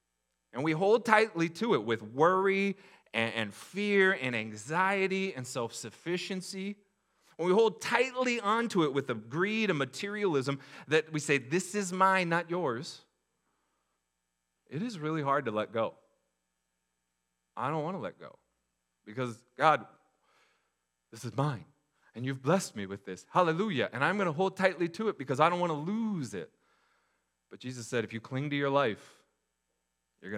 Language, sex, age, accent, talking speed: English, male, 30-49, American, 165 wpm